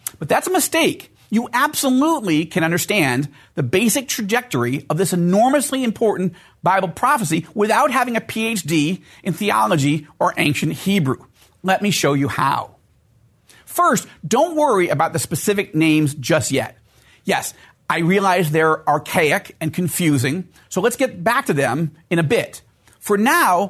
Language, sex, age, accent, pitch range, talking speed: English, male, 40-59, American, 160-230 Hz, 145 wpm